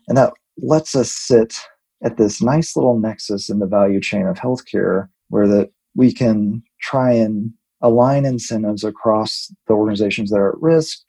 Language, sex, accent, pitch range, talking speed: English, male, American, 105-120 Hz, 170 wpm